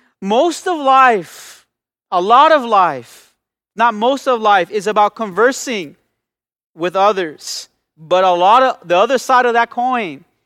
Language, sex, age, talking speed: English, male, 30-49, 150 wpm